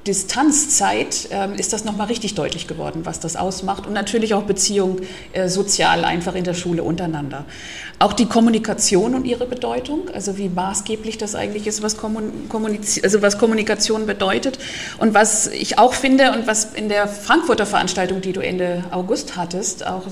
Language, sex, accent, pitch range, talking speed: German, female, German, 185-225 Hz, 155 wpm